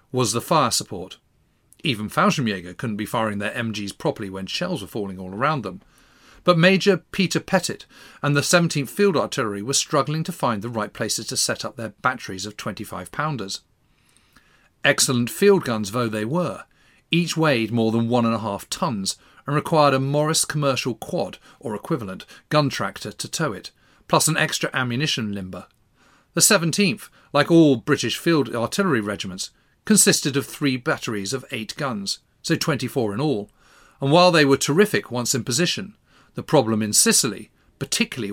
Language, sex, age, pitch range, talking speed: English, male, 40-59, 110-155 Hz, 170 wpm